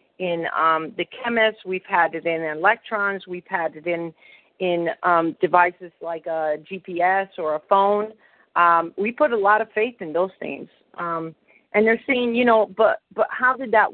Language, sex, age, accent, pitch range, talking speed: English, female, 40-59, American, 170-205 Hz, 185 wpm